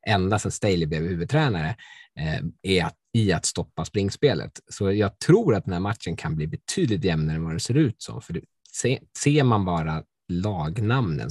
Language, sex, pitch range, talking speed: Swedish, male, 85-120 Hz, 170 wpm